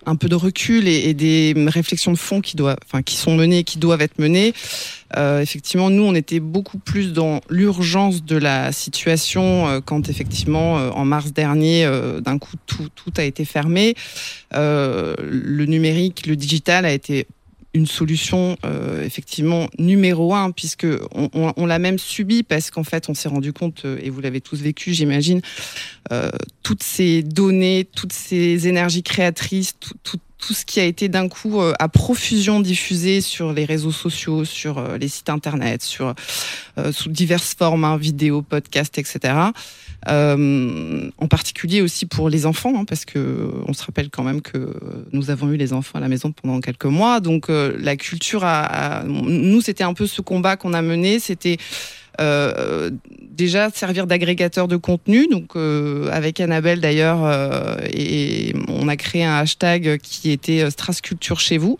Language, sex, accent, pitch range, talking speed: French, female, French, 150-180 Hz, 180 wpm